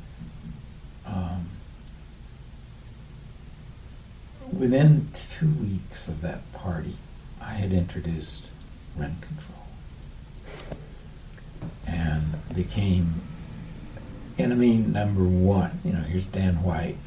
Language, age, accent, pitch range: English, 60-79, American, 90-120 Hz